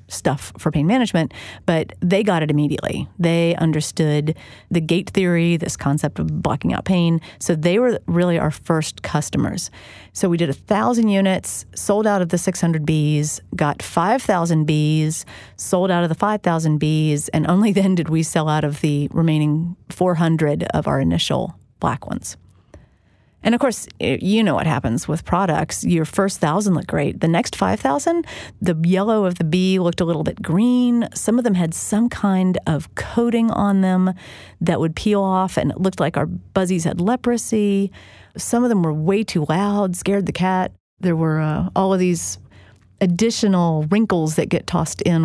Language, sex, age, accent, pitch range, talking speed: English, female, 40-59, American, 150-190 Hz, 180 wpm